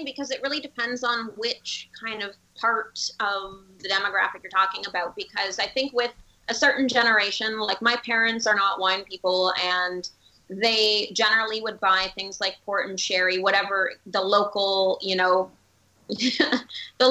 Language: English